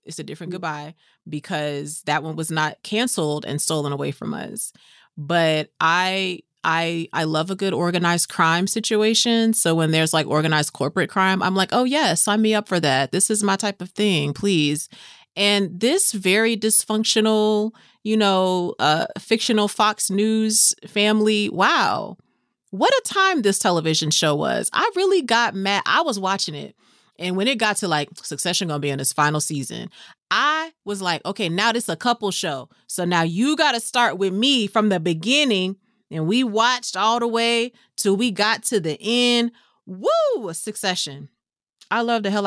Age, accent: 30-49, American